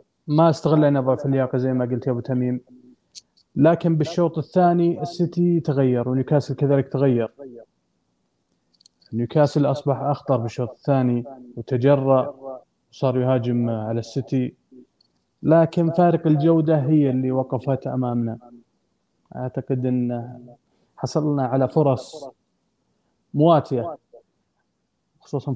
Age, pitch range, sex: 20-39, 120-150 Hz, male